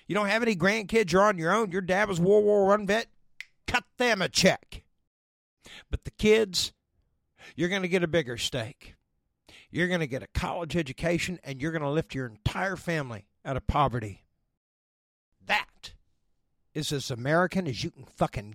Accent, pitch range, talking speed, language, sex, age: American, 135-195 Hz, 180 wpm, English, male, 60-79